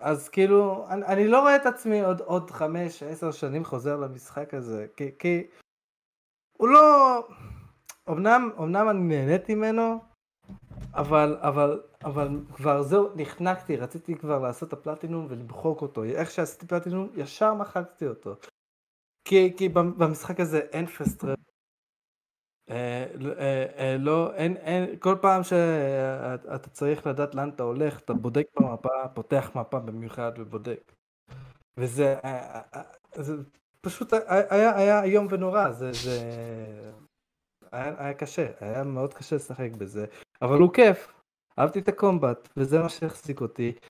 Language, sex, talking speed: Hebrew, male, 135 wpm